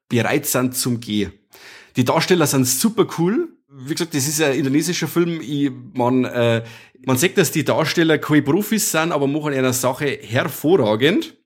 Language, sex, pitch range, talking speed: German, male, 120-155 Hz, 170 wpm